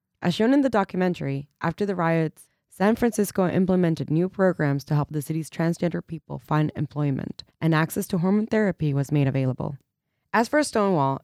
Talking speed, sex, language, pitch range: 170 wpm, female, Danish, 145-185 Hz